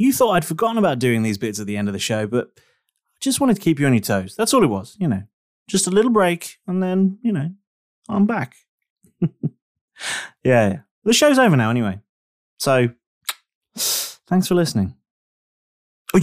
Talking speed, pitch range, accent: 190 wpm, 120-200 Hz, British